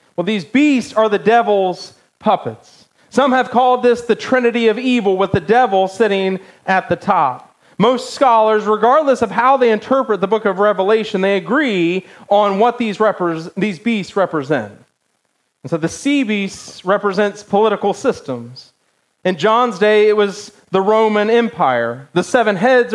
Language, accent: English, American